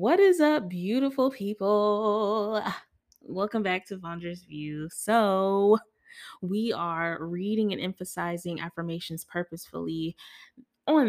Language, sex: English, female